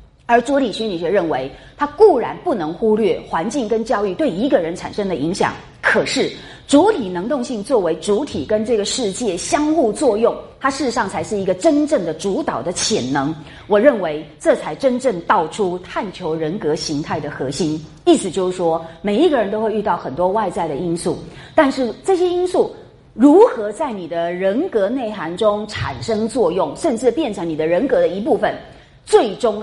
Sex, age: female, 30-49